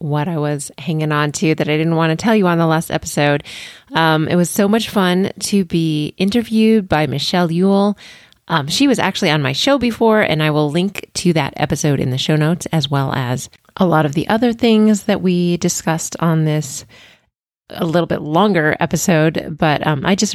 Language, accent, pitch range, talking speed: English, American, 150-190 Hz, 210 wpm